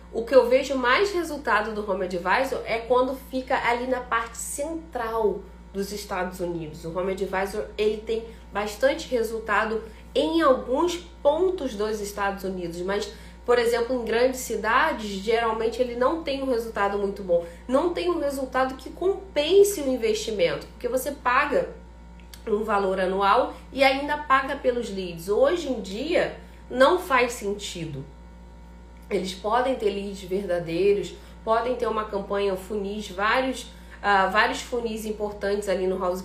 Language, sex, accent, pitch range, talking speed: Portuguese, female, Brazilian, 195-260 Hz, 145 wpm